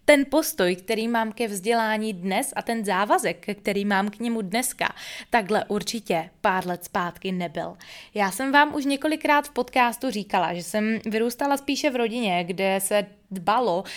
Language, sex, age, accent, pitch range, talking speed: Czech, female, 20-39, native, 195-240 Hz, 165 wpm